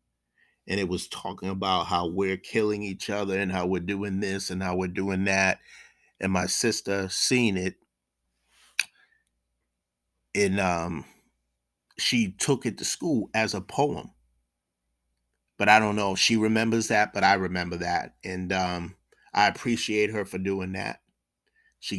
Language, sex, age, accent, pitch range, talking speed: English, male, 30-49, American, 90-110 Hz, 155 wpm